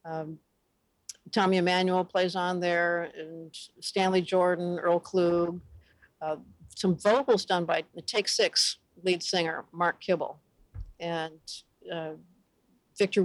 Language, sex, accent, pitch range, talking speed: English, female, American, 165-195 Hz, 115 wpm